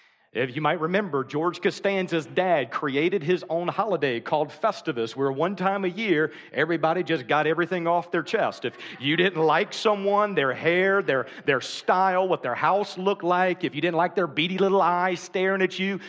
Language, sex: English, male